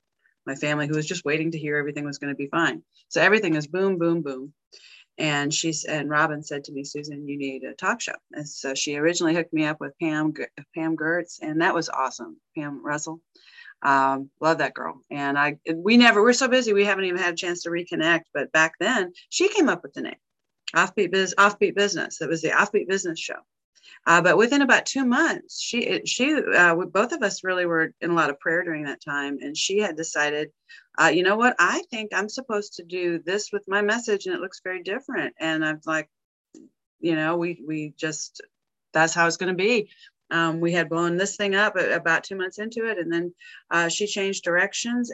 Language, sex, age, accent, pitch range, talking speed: English, female, 30-49, American, 155-200 Hz, 220 wpm